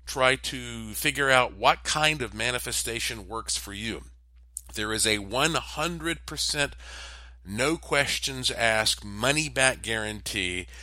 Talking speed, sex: 115 wpm, male